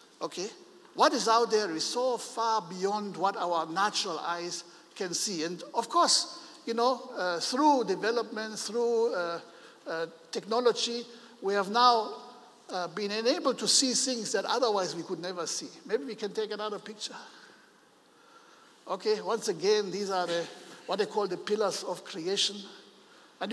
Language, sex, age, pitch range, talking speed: English, male, 60-79, 200-265 Hz, 155 wpm